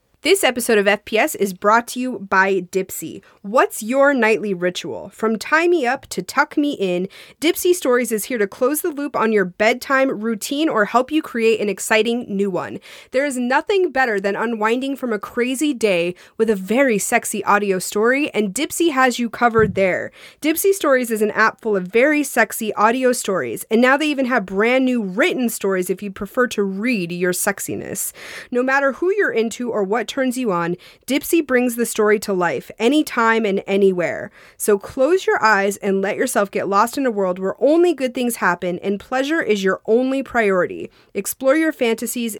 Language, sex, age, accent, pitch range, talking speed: English, female, 30-49, American, 205-265 Hz, 190 wpm